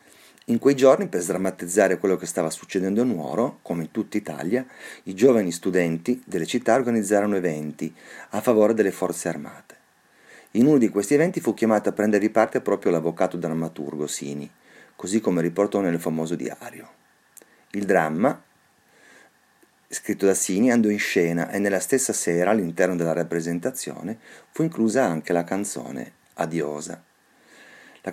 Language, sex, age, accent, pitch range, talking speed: Italian, male, 40-59, native, 85-110 Hz, 145 wpm